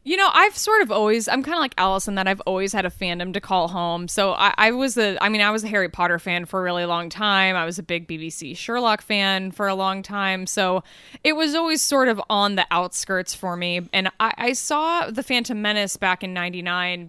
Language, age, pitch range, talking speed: English, 20-39, 180-215 Hz, 245 wpm